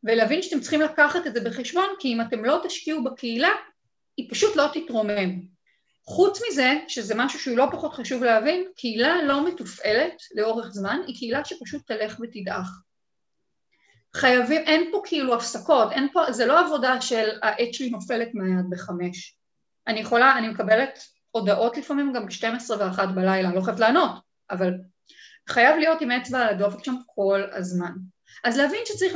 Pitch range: 205-310 Hz